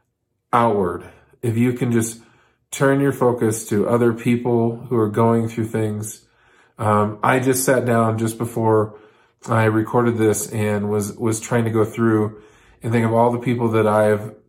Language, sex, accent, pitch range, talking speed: English, male, American, 105-115 Hz, 170 wpm